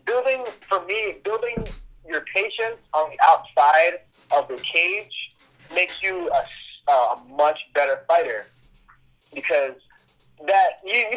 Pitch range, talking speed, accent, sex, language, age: 135-195 Hz, 125 wpm, American, male, English, 30-49